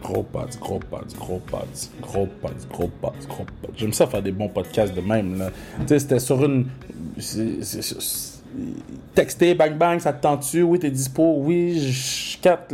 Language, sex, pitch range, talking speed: French, male, 105-130 Hz, 205 wpm